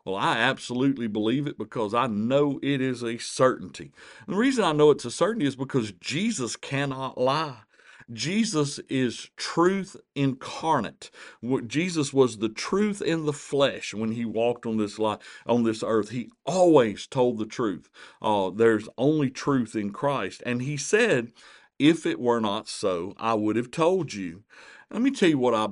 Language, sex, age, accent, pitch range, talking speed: English, male, 50-69, American, 110-145 Hz, 170 wpm